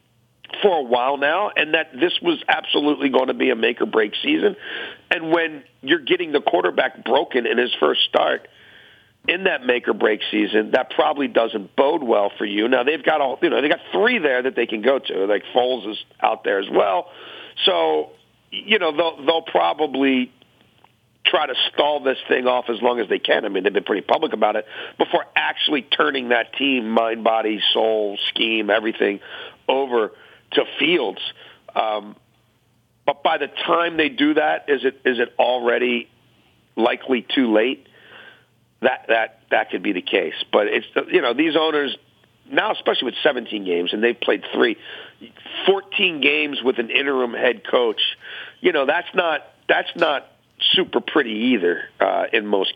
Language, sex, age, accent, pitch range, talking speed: English, male, 50-69, American, 115-170 Hz, 180 wpm